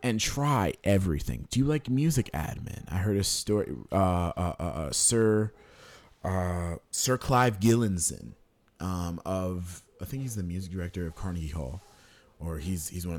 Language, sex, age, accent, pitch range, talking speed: English, male, 30-49, American, 80-115 Hz, 165 wpm